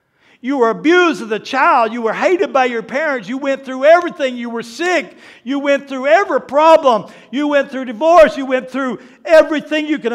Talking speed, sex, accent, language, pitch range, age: 200 wpm, male, American, English, 175-260 Hz, 60-79